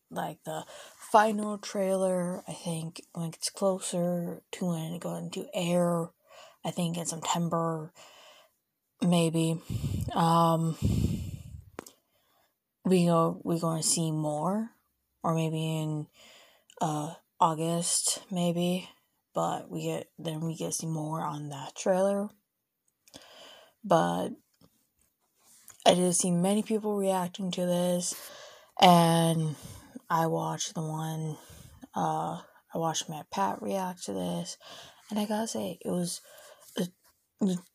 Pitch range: 160-195 Hz